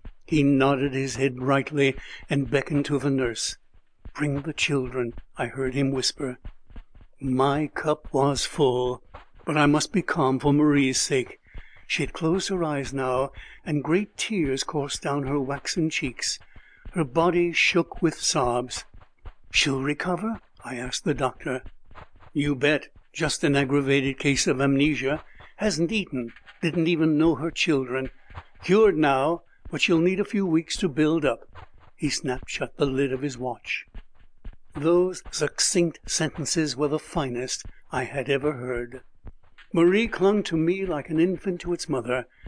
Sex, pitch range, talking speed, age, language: male, 130-165 Hz, 155 wpm, 60-79, English